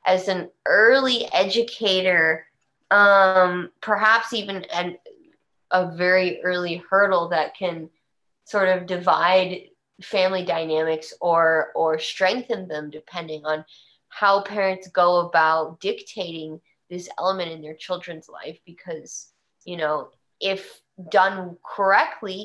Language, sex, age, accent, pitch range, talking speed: English, female, 20-39, American, 165-205 Hz, 110 wpm